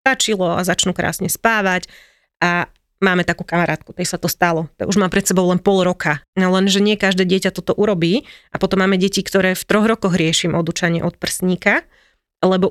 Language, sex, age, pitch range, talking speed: Slovak, female, 30-49, 180-205 Hz, 195 wpm